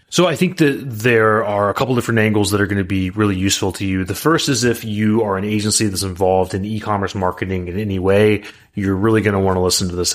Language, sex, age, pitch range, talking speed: English, male, 30-49, 95-115 Hz, 260 wpm